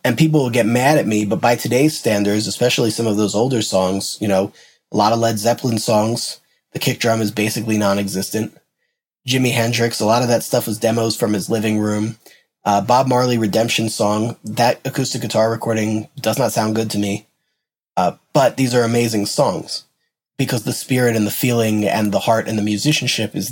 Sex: male